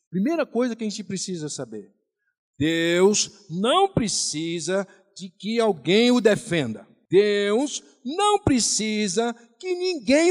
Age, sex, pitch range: 60-79, male, 165-260 Hz